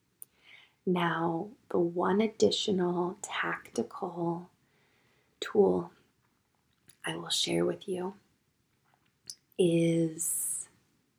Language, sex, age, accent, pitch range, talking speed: English, female, 20-39, American, 170-210 Hz, 65 wpm